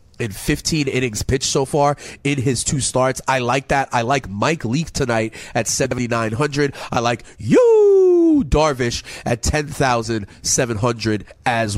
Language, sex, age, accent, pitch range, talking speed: English, male, 30-49, American, 115-145 Hz, 165 wpm